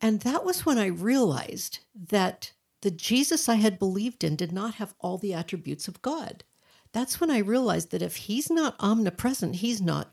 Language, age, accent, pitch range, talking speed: English, 60-79, American, 180-230 Hz, 190 wpm